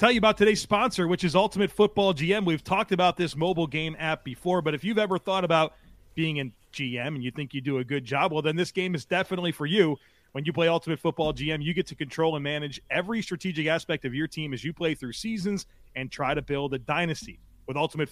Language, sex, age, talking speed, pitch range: English, male, 30-49, 245 wpm, 145-190 Hz